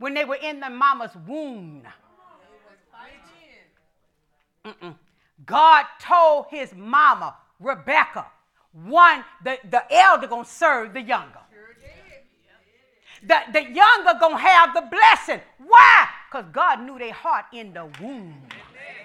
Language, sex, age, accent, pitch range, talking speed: English, female, 40-59, American, 230-335 Hz, 115 wpm